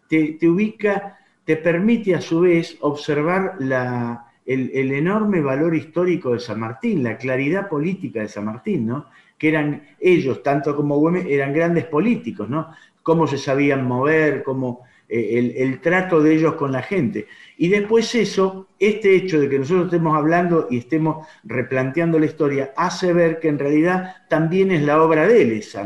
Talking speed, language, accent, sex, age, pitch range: 175 wpm, Spanish, Argentinian, male, 50-69, 130-175 Hz